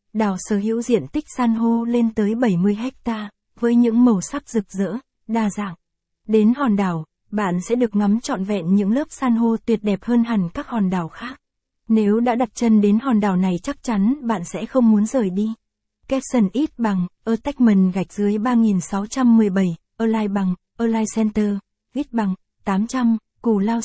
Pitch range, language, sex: 200-235 Hz, Vietnamese, female